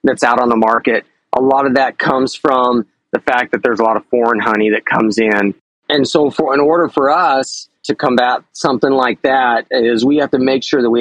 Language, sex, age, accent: English, male, 40-59, American